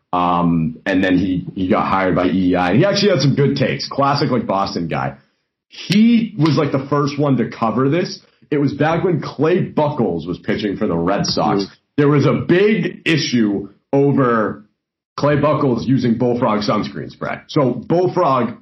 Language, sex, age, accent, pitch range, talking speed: English, male, 40-59, American, 110-145 Hz, 175 wpm